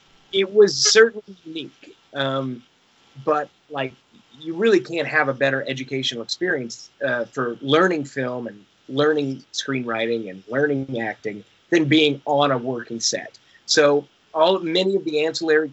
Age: 20-39